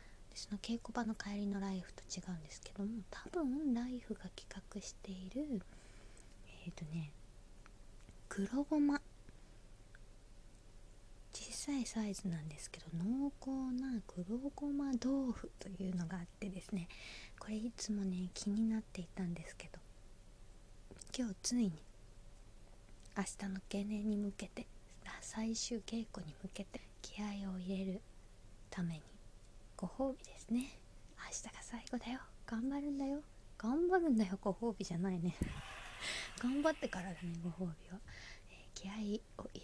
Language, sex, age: Japanese, female, 20-39